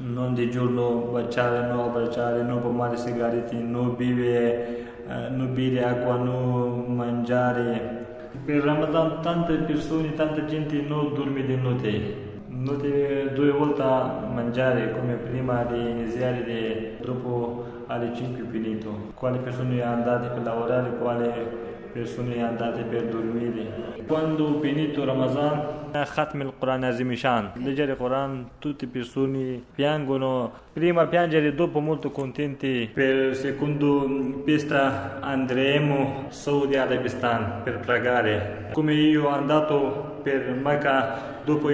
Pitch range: 120-140 Hz